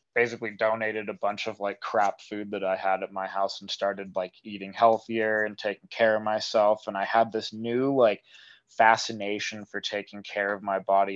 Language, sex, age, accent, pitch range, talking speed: English, male, 20-39, American, 100-115 Hz, 200 wpm